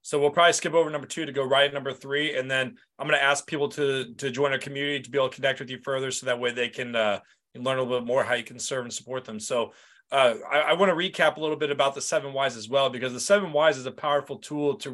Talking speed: 305 wpm